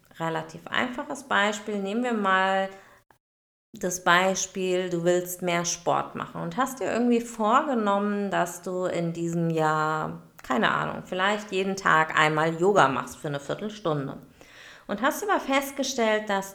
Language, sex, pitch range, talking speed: German, female, 170-220 Hz, 145 wpm